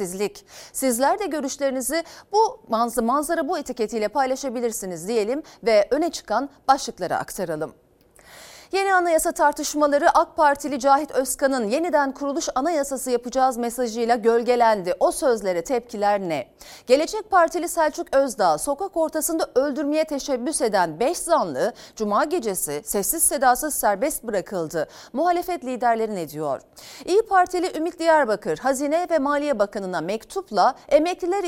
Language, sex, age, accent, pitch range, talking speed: Turkish, female, 40-59, native, 220-315 Hz, 120 wpm